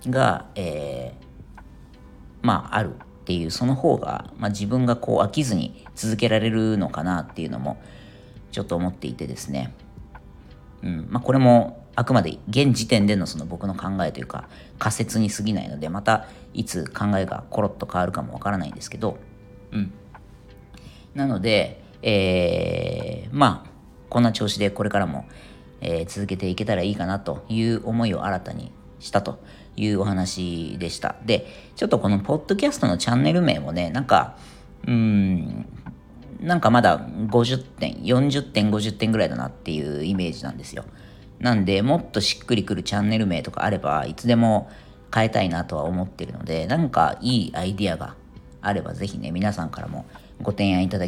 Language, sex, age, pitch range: Japanese, female, 40-59, 90-115 Hz